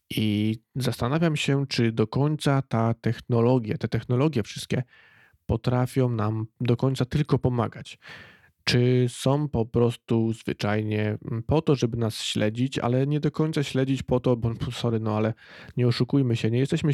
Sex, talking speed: male, 150 wpm